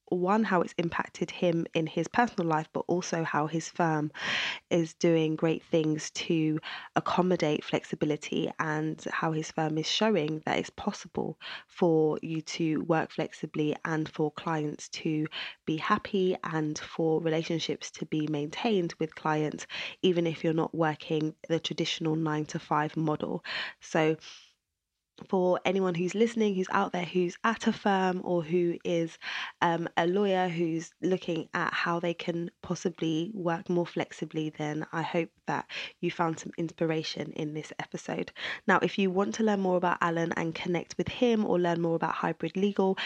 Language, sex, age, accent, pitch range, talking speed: English, female, 20-39, British, 160-180 Hz, 165 wpm